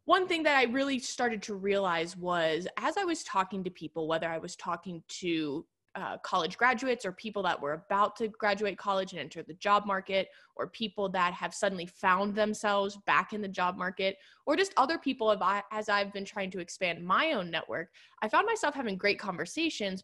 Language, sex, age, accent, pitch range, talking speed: English, female, 20-39, American, 180-240 Hz, 200 wpm